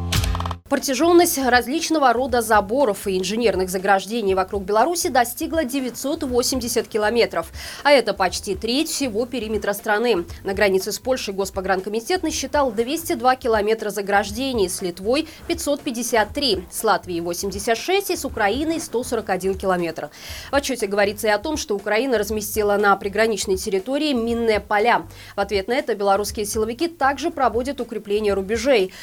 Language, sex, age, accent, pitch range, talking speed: Russian, female, 20-39, native, 200-270 Hz, 135 wpm